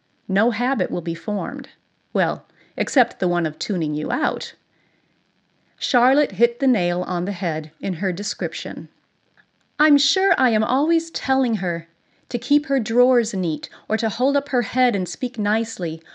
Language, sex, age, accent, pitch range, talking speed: English, female, 40-59, American, 185-270 Hz, 165 wpm